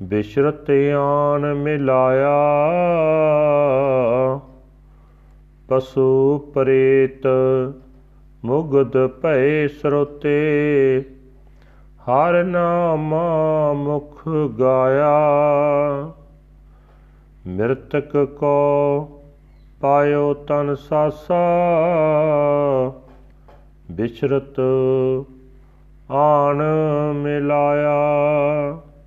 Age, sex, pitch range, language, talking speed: 40-59, male, 135-150 Hz, Punjabi, 40 wpm